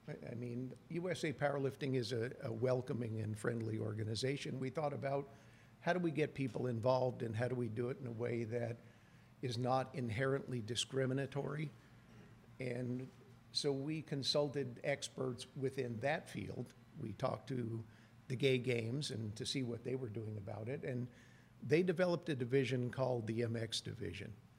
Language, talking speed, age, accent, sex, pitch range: English, 160 wpm, 50-69, American, male, 115-135 Hz